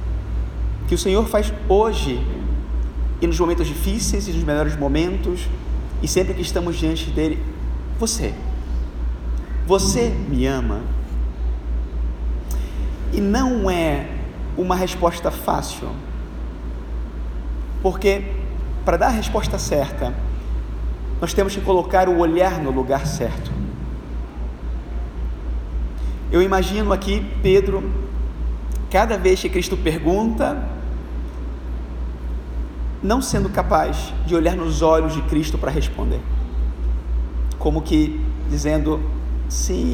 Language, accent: Portuguese, Brazilian